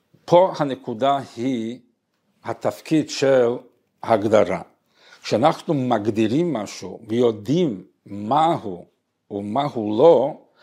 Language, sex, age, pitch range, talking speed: Hebrew, male, 50-69, 120-155 Hz, 85 wpm